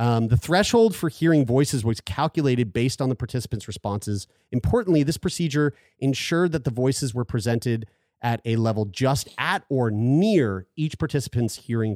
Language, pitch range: English, 105-145 Hz